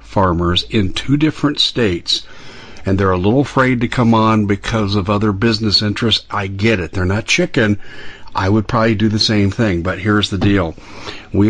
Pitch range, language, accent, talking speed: 100-115 Hz, English, American, 190 wpm